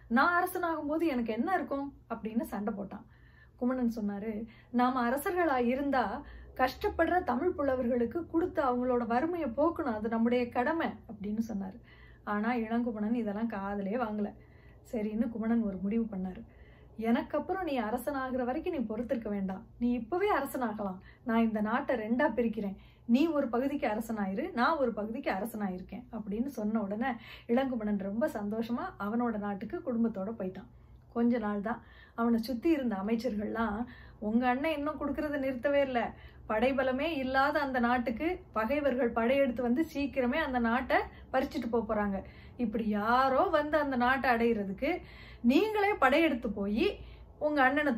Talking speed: 130 wpm